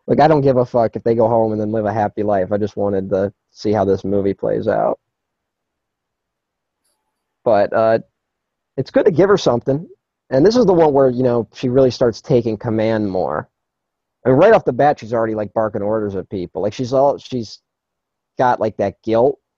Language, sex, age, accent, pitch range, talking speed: English, male, 20-39, American, 110-135 Hz, 210 wpm